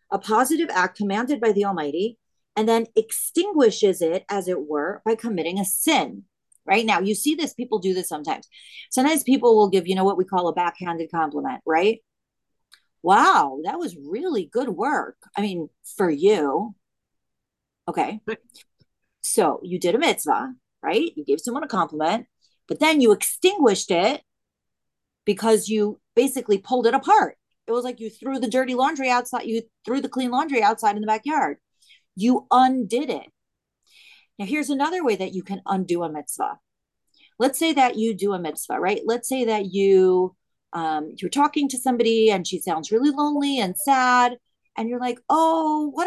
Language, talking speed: English, 175 wpm